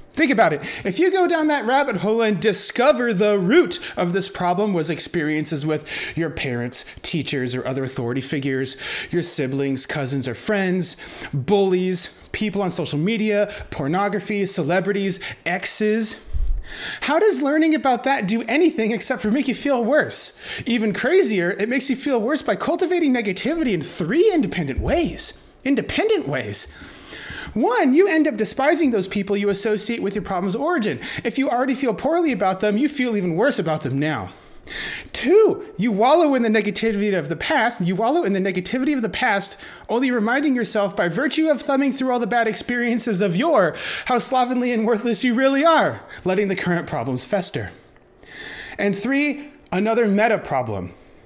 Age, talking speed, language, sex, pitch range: 30-49, 170 wpm, English, male, 180-260 Hz